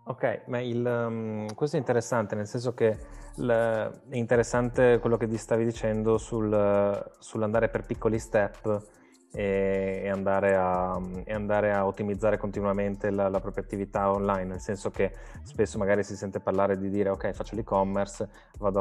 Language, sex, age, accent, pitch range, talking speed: Italian, male, 20-39, native, 95-110 Hz, 155 wpm